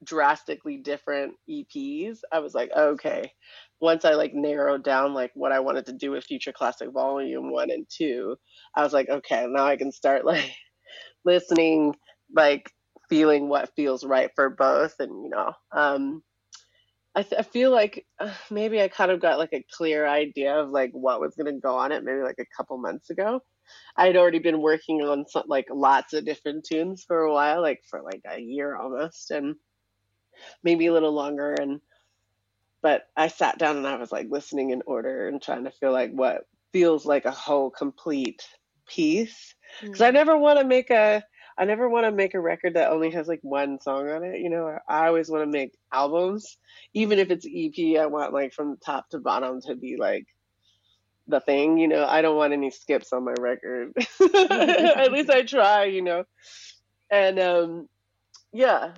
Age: 30-49